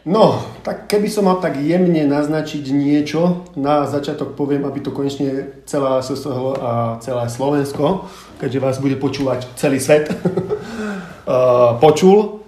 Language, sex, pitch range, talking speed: Slovak, male, 125-145 Hz, 130 wpm